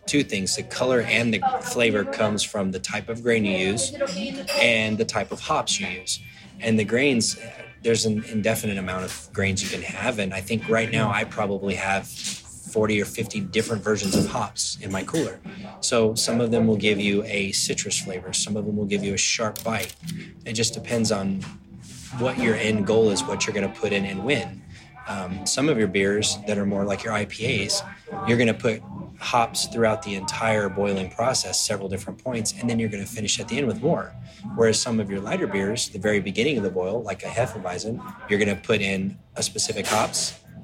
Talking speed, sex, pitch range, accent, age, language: 215 wpm, male, 100-115 Hz, American, 20-39, English